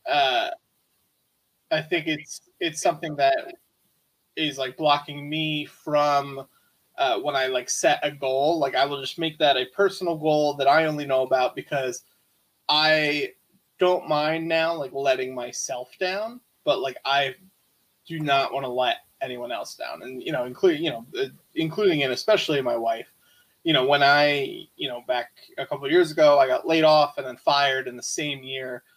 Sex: male